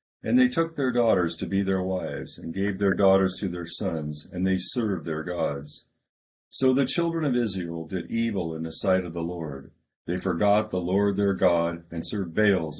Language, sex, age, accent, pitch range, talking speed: English, male, 50-69, American, 85-115 Hz, 200 wpm